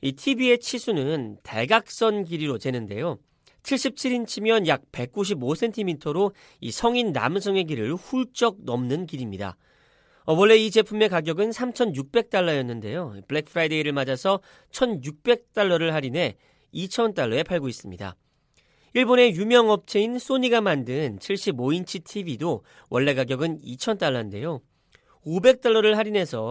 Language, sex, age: Korean, male, 40-59